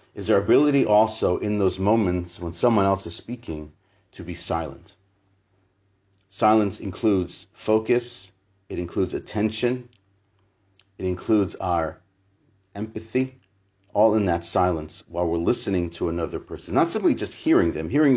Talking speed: 135 wpm